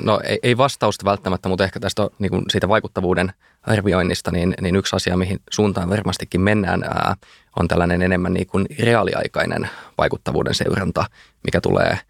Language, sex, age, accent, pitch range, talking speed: Finnish, male, 20-39, native, 90-105 Hz, 130 wpm